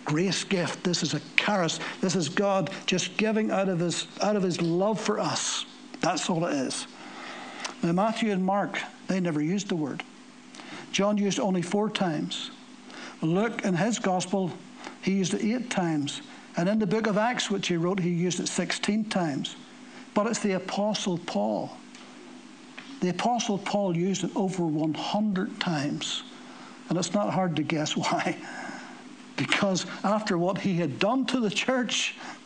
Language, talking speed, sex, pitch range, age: English, 170 wpm, male, 170-235 Hz, 60-79